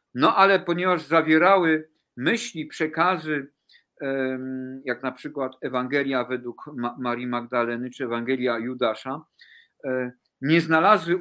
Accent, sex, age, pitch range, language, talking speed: native, male, 50-69, 140-170 Hz, Polish, 95 wpm